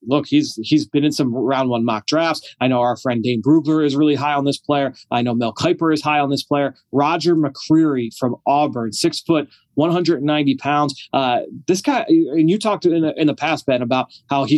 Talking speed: 235 wpm